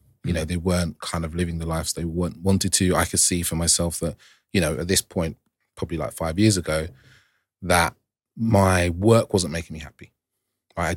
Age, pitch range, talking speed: 30-49, 85-105 Hz, 200 wpm